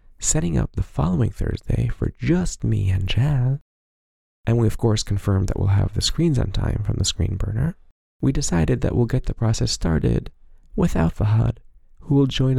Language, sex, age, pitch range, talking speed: English, male, 30-49, 80-125 Hz, 190 wpm